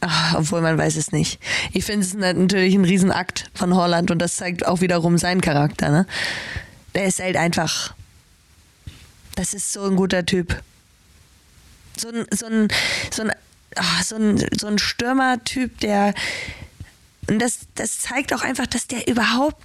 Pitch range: 165-205 Hz